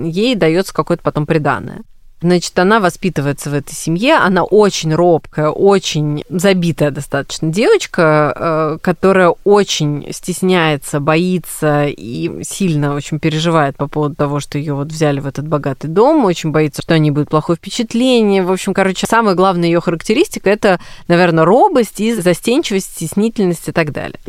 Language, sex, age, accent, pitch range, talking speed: Russian, female, 20-39, native, 155-195 Hz, 150 wpm